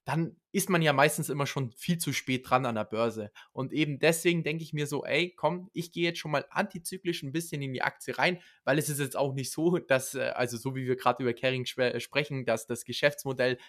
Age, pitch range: 20-39, 130-160 Hz